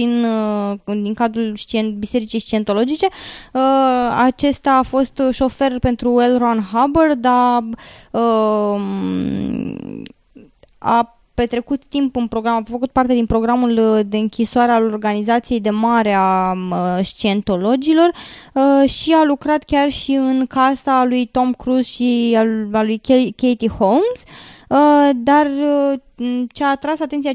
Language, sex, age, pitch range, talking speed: Romanian, female, 20-39, 225-270 Hz, 115 wpm